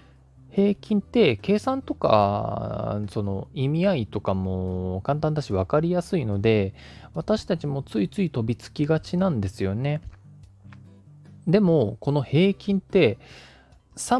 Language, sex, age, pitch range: Japanese, male, 20-39, 100-145 Hz